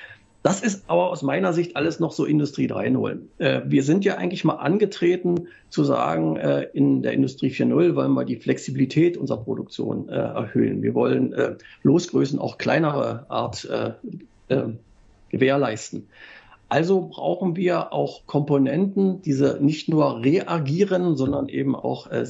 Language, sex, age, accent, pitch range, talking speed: German, male, 50-69, German, 125-175 Hz, 150 wpm